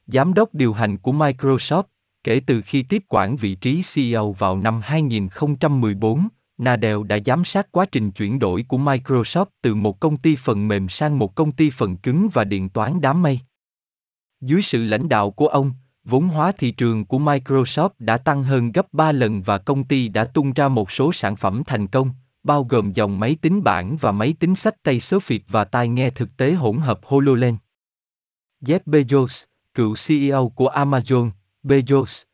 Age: 20-39